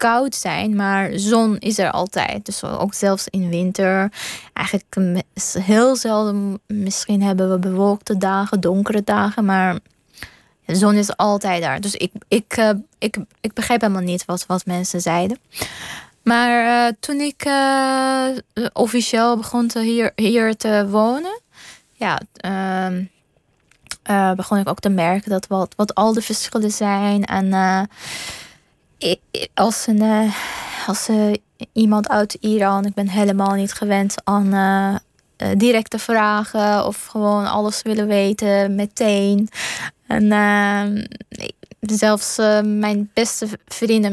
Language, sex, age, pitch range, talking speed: Dutch, female, 20-39, 195-220 Hz, 135 wpm